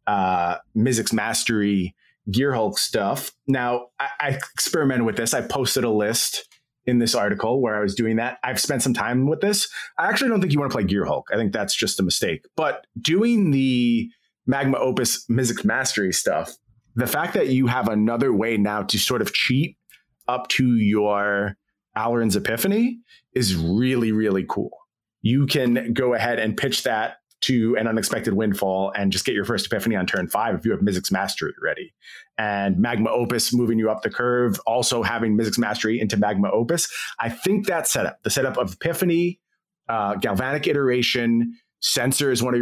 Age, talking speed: 30-49, 185 wpm